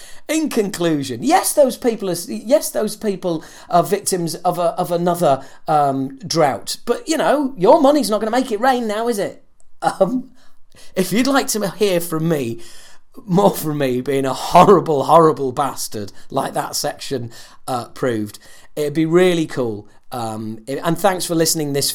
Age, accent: 40-59, British